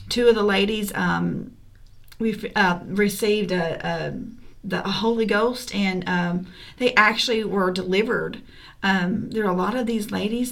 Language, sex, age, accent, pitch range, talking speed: English, female, 40-59, American, 180-215 Hz, 145 wpm